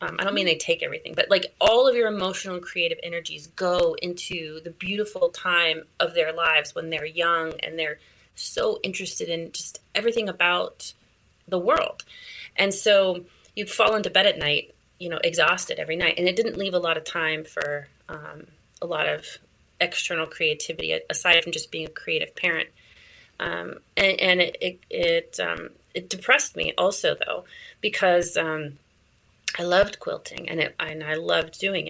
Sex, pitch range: female, 165-235 Hz